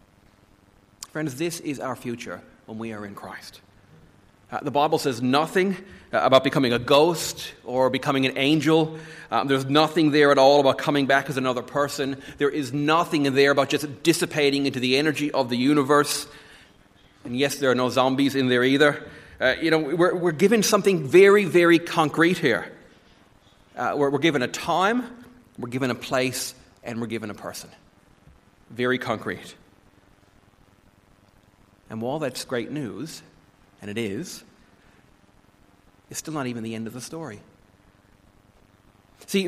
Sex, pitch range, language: male, 125-160 Hz, English